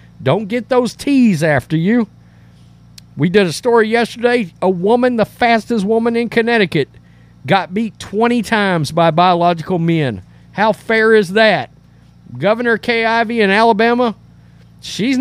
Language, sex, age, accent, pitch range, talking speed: English, male, 50-69, American, 135-215 Hz, 140 wpm